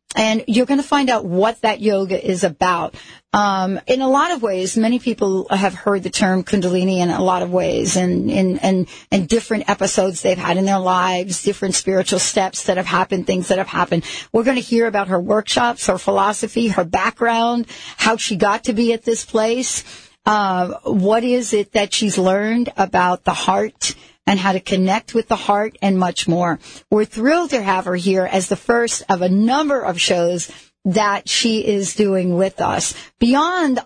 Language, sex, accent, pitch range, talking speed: English, female, American, 185-230 Hz, 195 wpm